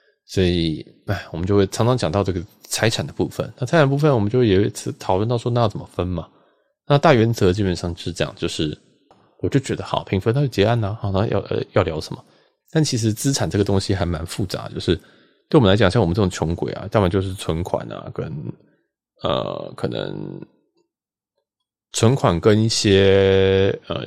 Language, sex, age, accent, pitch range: Chinese, male, 20-39, native, 95-130 Hz